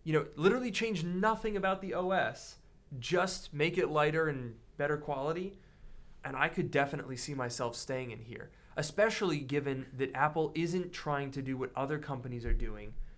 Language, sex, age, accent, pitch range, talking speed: English, male, 20-39, American, 130-165 Hz, 170 wpm